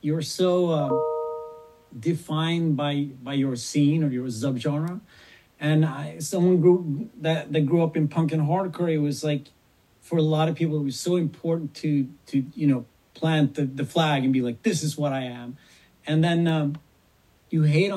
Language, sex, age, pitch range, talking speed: English, male, 40-59, 145-175 Hz, 185 wpm